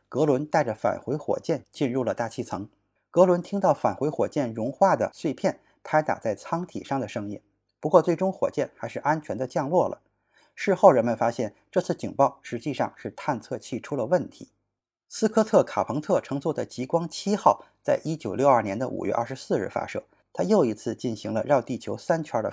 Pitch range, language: 130-180 Hz, Chinese